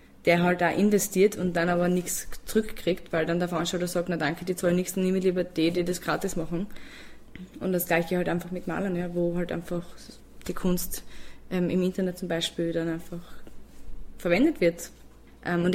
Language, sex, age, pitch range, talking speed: German, female, 20-39, 170-200 Hz, 195 wpm